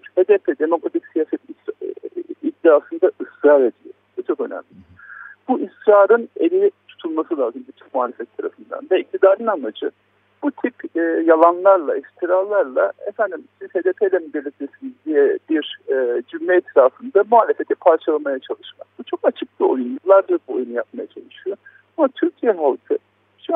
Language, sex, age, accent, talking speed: Turkish, male, 50-69, native, 130 wpm